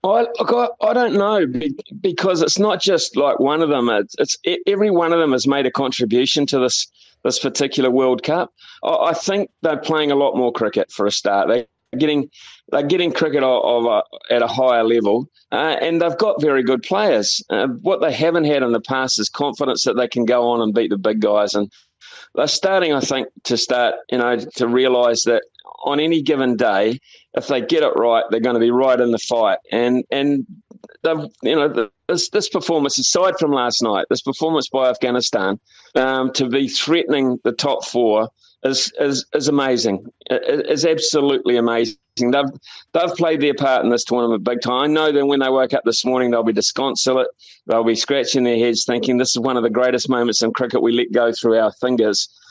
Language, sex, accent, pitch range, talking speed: English, male, Australian, 120-160 Hz, 205 wpm